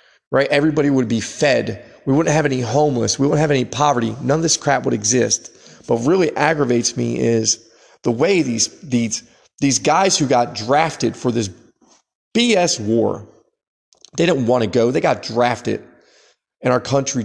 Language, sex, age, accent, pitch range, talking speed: English, male, 30-49, American, 115-140 Hz, 175 wpm